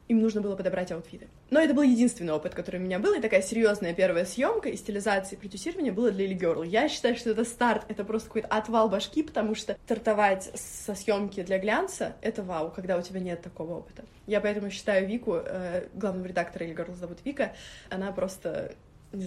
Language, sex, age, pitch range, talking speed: Russian, female, 20-39, 190-235 Hz, 200 wpm